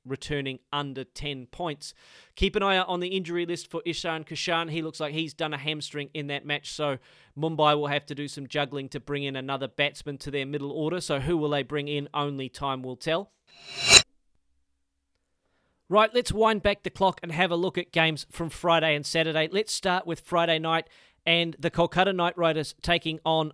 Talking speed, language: 205 wpm, English